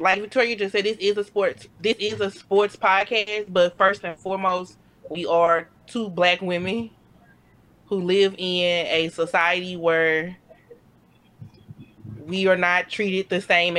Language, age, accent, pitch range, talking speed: English, 20-39, American, 170-210 Hz, 150 wpm